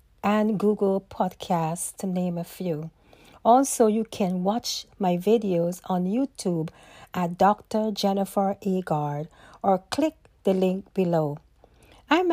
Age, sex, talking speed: 40-59, female, 120 wpm